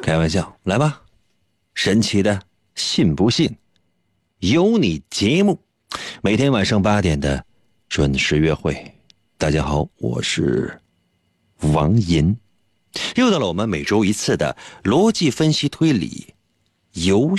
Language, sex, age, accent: Chinese, male, 50-69, native